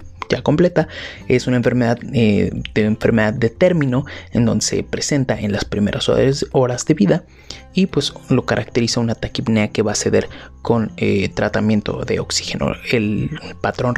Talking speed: 160 wpm